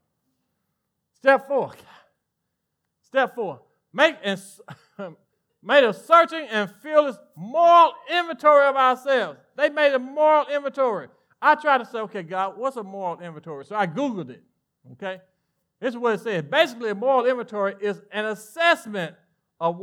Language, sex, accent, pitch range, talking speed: English, male, American, 165-275 Hz, 145 wpm